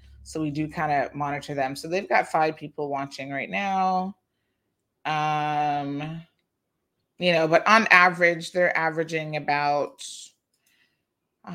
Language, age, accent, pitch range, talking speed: English, 30-49, American, 155-185 Hz, 130 wpm